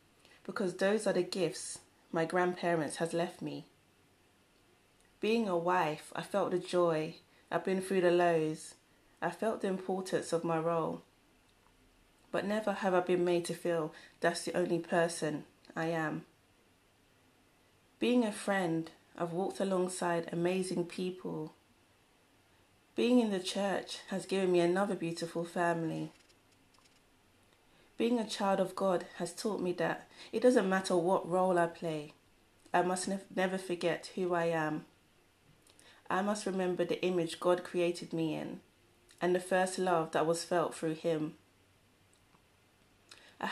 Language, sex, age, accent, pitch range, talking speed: English, female, 30-49, British, 160-190 Hz, 140 wpm